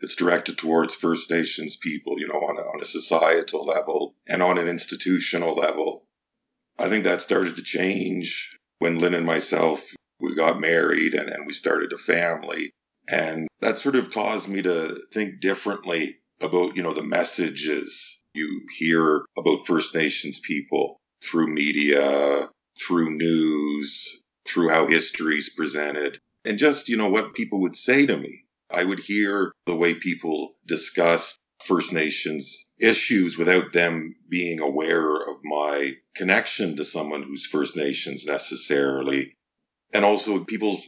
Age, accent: 50-69, American